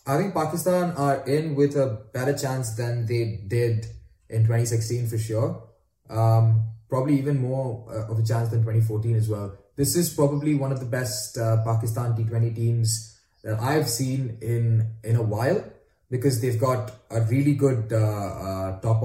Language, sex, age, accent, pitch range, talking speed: English, male, 20-39, Indian, 110-135 Hz, 170 wpm